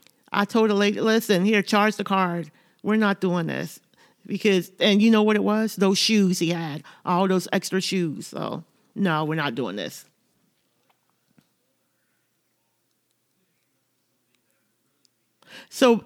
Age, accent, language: 40-59, American, English